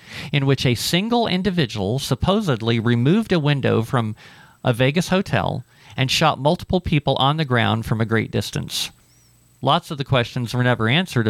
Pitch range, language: 110-145 Hz, English